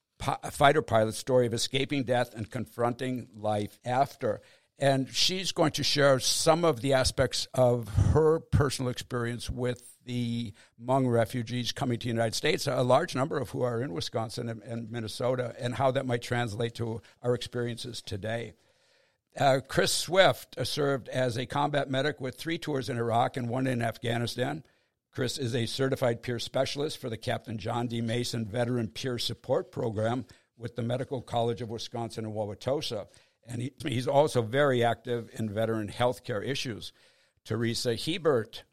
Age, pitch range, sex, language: 60-79, 115-130 Hz, male, English